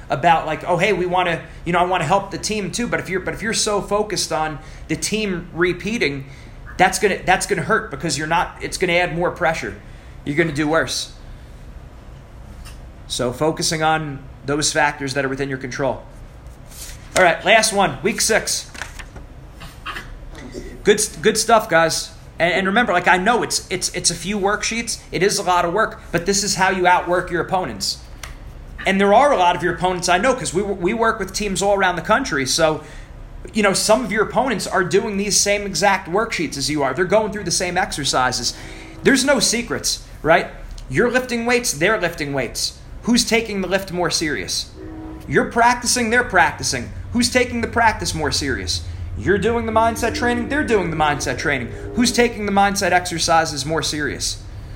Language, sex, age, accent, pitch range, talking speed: English, male, 30-49, American, 155-210 Hz, 195 wpm